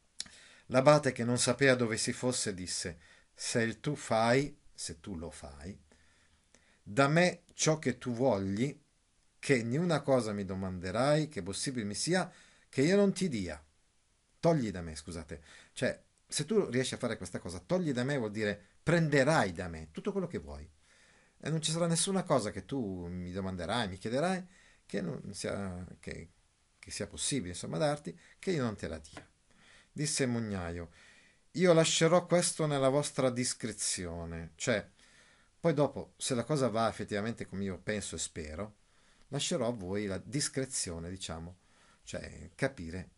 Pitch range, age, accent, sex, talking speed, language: 90-140 Hz, 50-69, native, male, 165 wpm, Italian